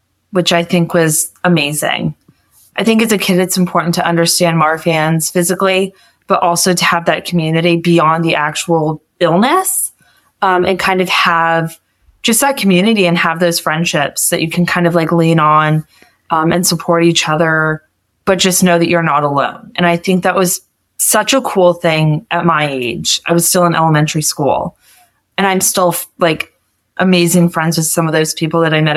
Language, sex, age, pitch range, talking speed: English, female, 20-39, 160-180 Hz, 190 wpm